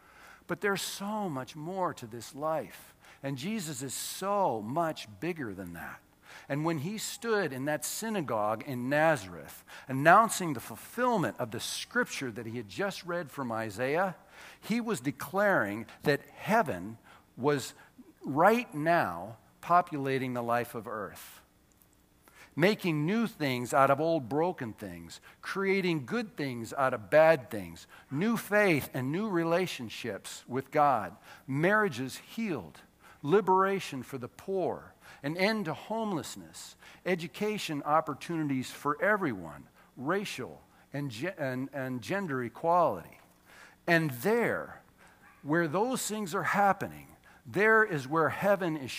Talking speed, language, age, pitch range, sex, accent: 130 wpm, English, 50-69, 130-195 Hz, male, American